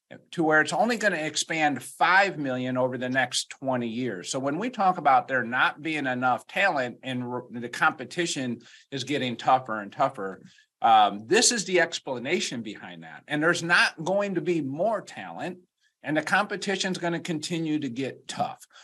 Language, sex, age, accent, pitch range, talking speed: English, male, 50-69, American, 125-160 Hz, 170 wpm